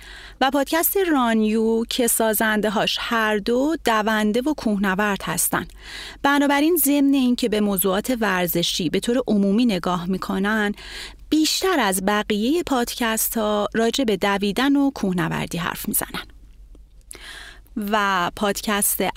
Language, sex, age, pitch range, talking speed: Persian, female, 30-49, 205-265 Hz, 120 wpm